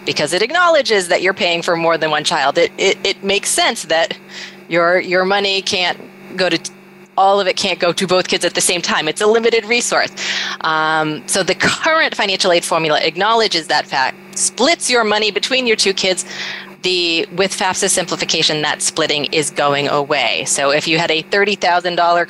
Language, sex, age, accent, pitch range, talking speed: English, female, 30-49, American, 170-205 Hz, 190 wpm